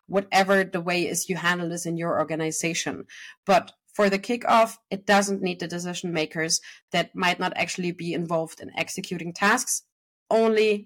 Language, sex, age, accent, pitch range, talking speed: English, female, 30-49, German, 175-205 Hz, 165 wpm